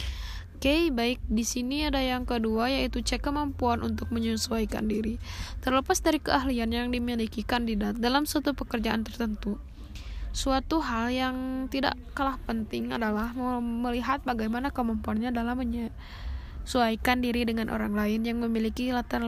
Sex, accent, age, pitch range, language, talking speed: female, native, 10-29, 205-250 Hz, Indonesian, 135 wpm